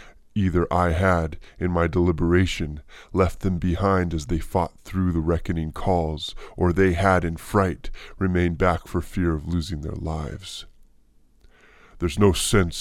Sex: female